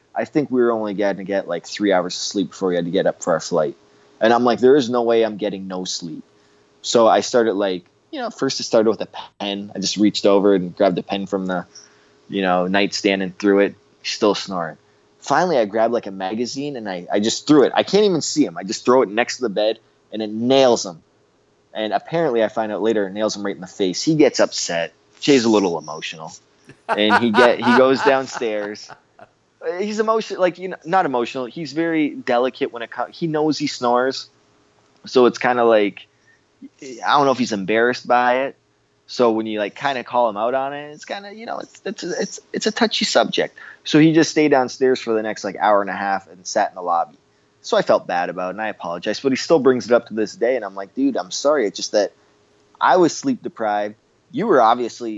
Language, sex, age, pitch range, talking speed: English, male, 20-39, 100-140 Hz, 245 wpm